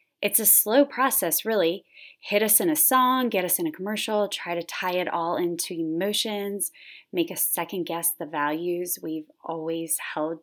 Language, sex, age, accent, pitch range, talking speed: English, female, 20-39, American, 175-255 Hz, 175 wpm